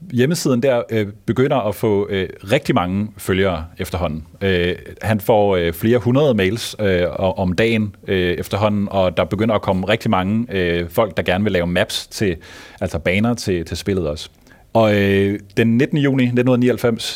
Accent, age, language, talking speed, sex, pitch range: native, 30-49, Danish, 175 wpm, male, 95-120 Hz